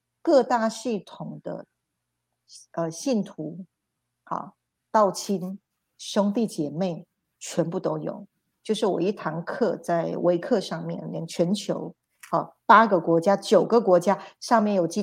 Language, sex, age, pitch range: Chinese, female, 50-69, 165-205 Hz